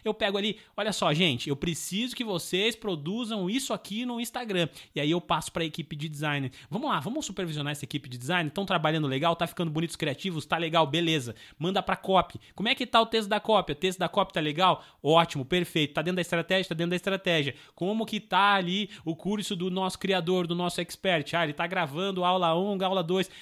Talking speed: 230 wpm